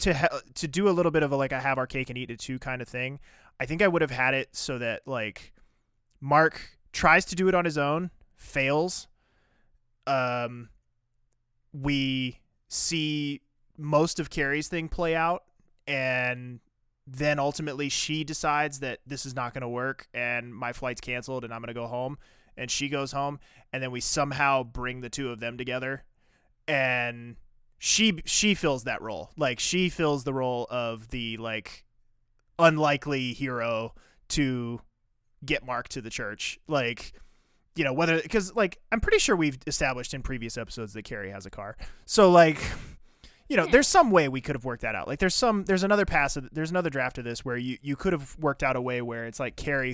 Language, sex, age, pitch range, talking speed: English, male, 20-39, 120-155 Hz, 195 wpm